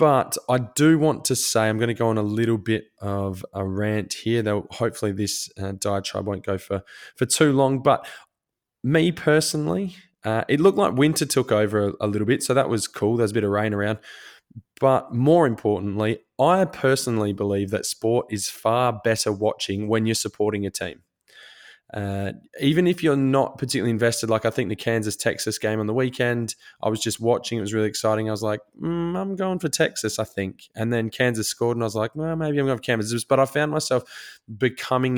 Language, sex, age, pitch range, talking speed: English, male, 20-39, 105-135 Hz, 210 wpm